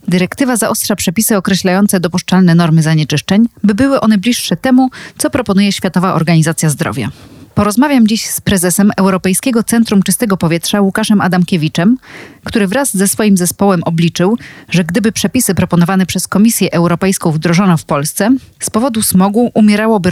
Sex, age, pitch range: female, 30-49, 175-215 Hz